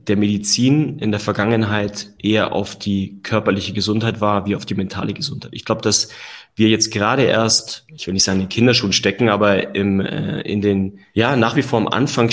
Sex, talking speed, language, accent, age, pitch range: male, 205 wpm, German, German, 30-49, 100-115 Hz